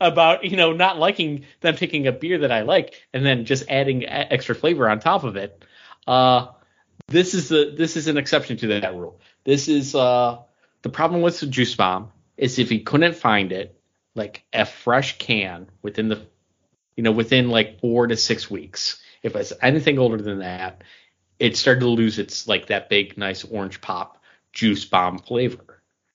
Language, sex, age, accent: English, male, 30-49, American